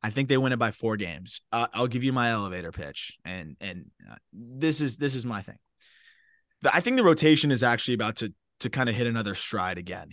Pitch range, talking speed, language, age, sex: 105-135 Hz, 235 wpm, English, 20-39, male